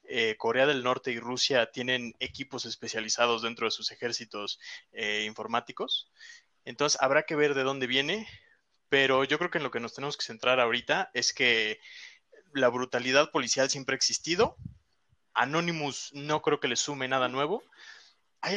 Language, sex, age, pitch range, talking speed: Spanish, male, 20-39, 120-145 Hz, 165 wpm